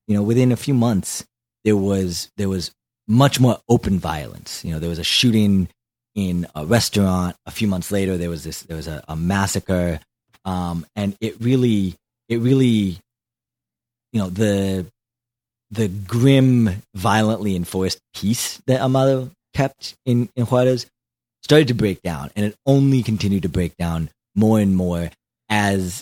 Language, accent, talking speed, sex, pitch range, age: English, American, 160 wpm, male, 95-120 Hz, 30-49